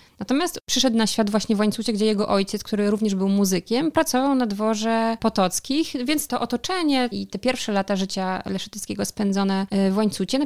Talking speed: 180 wpm